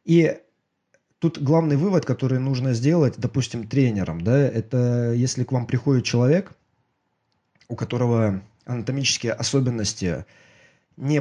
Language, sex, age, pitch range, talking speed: Russian, male, 20-39, 105-130 Hz, 110 wpm